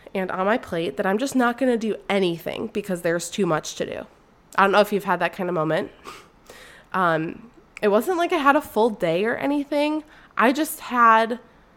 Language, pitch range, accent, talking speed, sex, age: English, 180-230 Hz, American, 215 wpm, female, 20-39